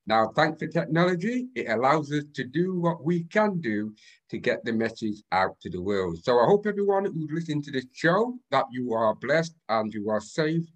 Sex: male